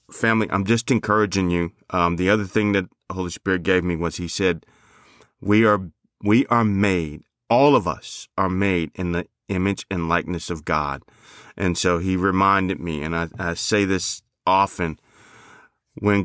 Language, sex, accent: English, male, American